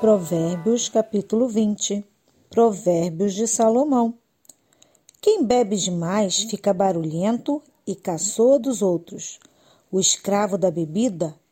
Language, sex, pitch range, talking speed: Portuguese, female, 200-275 Hz, 100 wpm